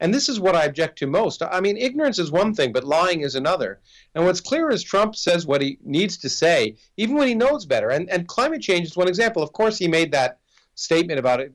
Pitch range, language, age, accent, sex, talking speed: 135-185 Hz, English, 50-69, American, male, 255 wpm